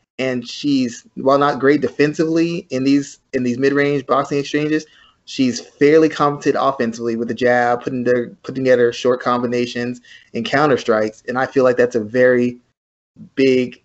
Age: 20-39